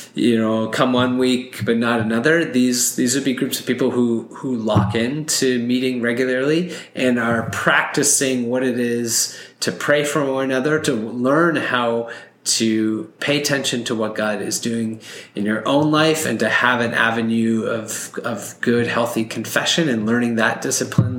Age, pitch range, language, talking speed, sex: 30-49, 110-130 Hz, English, 175 wpm, male